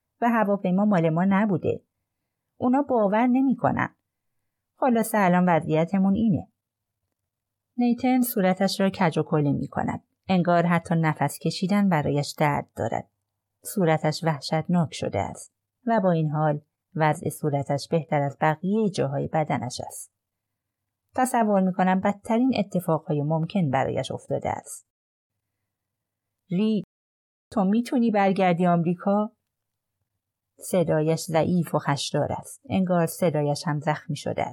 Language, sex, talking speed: Persian, female, 115 wpm